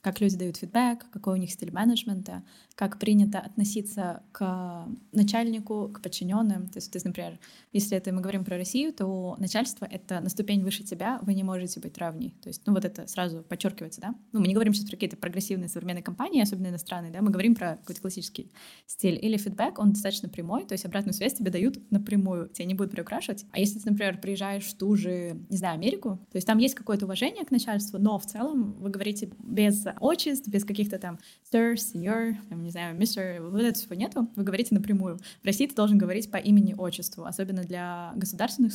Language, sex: Russian, female